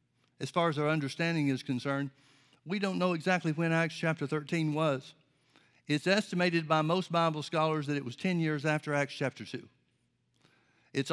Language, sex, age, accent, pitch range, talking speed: English, male, 60-79, American, 115-160 Hz, 175 wpm